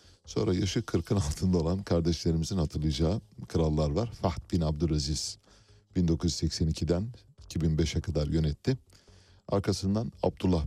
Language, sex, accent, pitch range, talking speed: Turkish, male, native, 80-100 Hz, 100 wpm